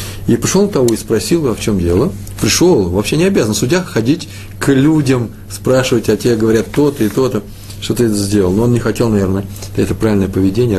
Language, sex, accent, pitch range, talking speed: Russian, male, native, 100-135 Hz, 200 wpm